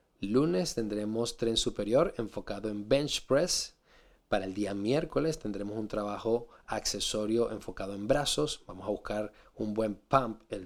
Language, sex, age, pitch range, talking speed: Spanish, male, 20-39, 105-125 Hz, 145 wpm